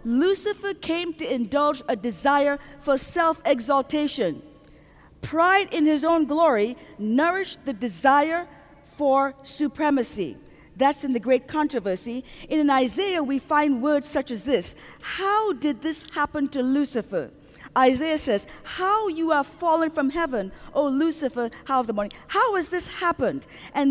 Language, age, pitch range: English, 40-59, 240-305 Hz